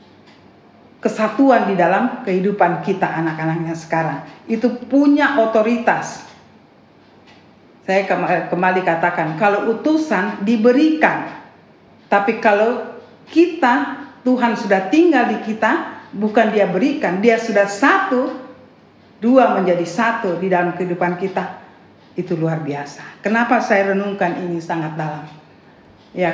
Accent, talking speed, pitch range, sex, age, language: native, 105 wpm, 180-235 Hz, female, 50-69, Indonesian